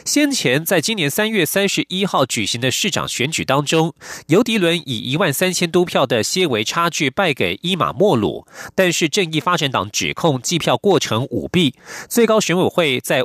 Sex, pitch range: male, 135-190 Hz